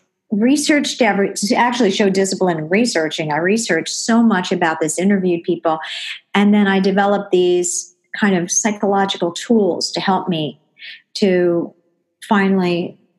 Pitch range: 175-200 Hz